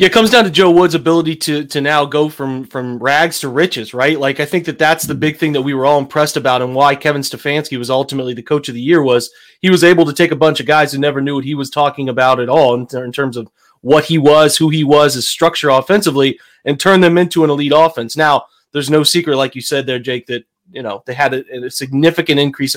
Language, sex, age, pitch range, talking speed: English, male, 30-49, 130-160 Hz, 270 wpm